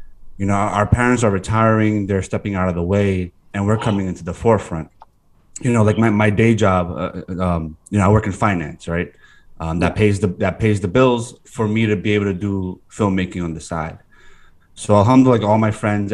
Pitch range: 90-105 Hz